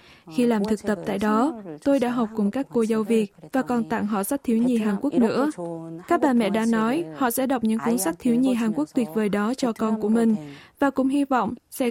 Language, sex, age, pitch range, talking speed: Vietnamese, female, 20-39, 215-255 Hz, 255 wpm